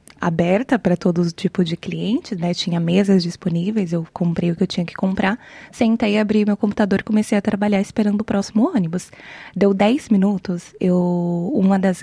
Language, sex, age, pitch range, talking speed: Portuguese, female, 20-39, 180-210 Hz, 180 wpm